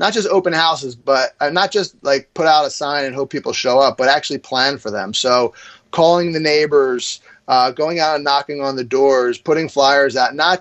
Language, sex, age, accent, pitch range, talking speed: English, male, 30-49, American, 125-155 Hz, 215 wpm